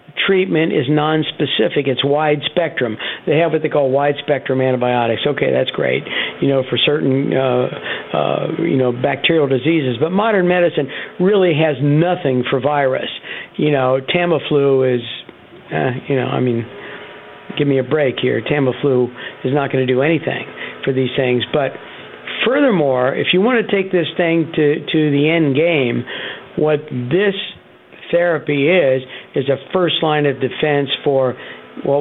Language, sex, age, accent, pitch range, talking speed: English, male, 60-79, American, 130-160 Hz, 165 wpm